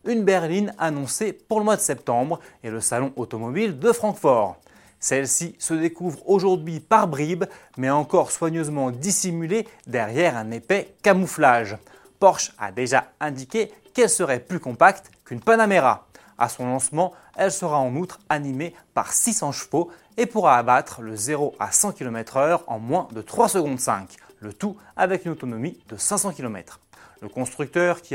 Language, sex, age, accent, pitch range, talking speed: French, male, 30-49, French, 130-195 Hz, 160 wpm